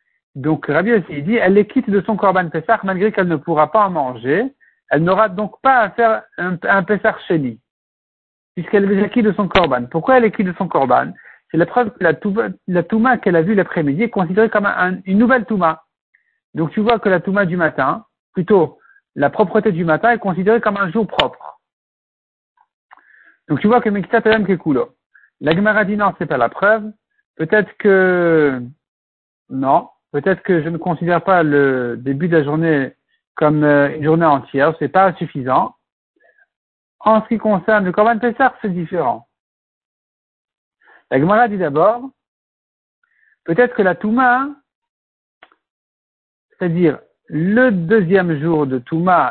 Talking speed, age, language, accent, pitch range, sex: 165 wpm, 60-79, French, French, 160-220 Hz, male